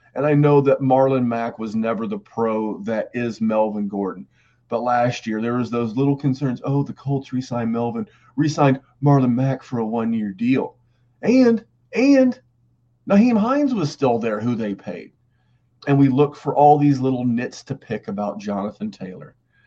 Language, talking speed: English, 175 wpm